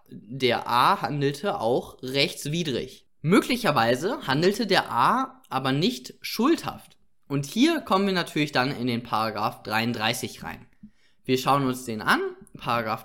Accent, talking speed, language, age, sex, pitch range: German, 135 wpm, German, 20-39, male, 130-185 Hz